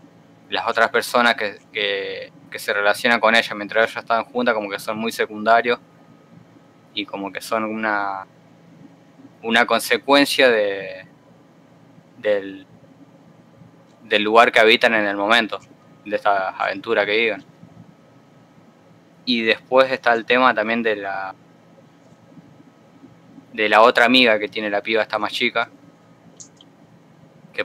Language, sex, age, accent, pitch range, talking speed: Spanish, male, 20-39, Argentinian, 110-130 Hz, 130 wpm